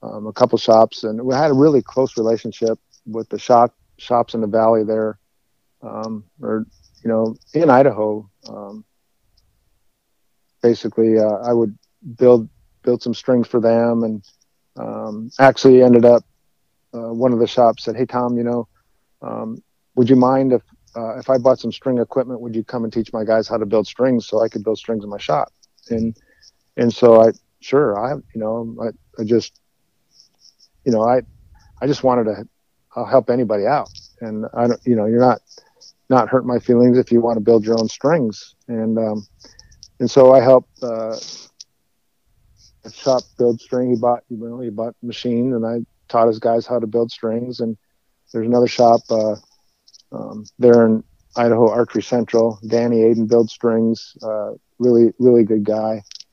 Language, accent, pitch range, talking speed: English, American, 110-120 Hz, 180 wpm